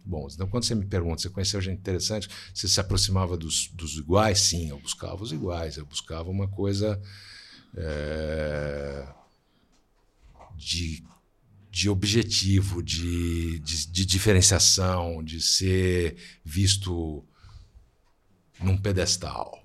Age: 60-79